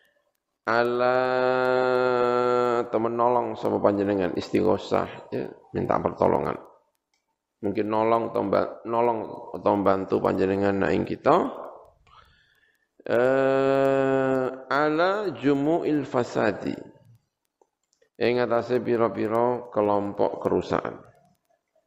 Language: Indonesian